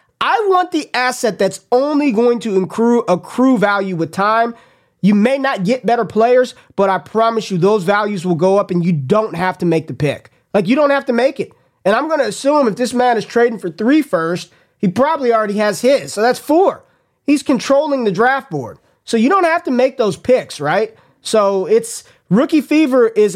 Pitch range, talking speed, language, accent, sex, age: 170-235 Hz, 210 wpm, English, American, male, 20-39